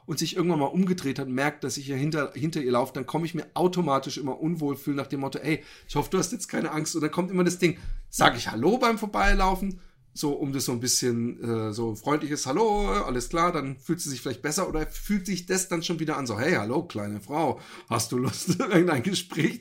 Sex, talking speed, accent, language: male, 250 wpm, German, German